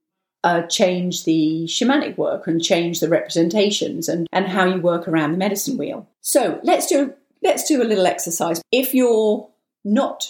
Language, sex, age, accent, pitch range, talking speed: English, female, 40-59, British, 170-220 Hz, 170 wpm